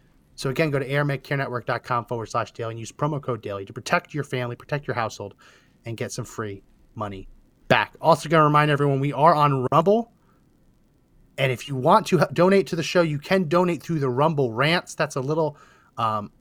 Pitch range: 125-165 Hz